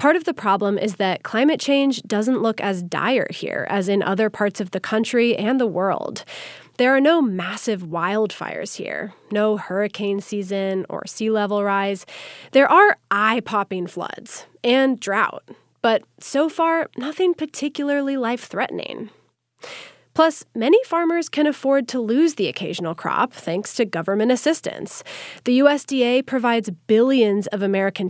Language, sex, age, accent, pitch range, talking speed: English, female, 20-39, American, 200-275 Hz, 145 wpm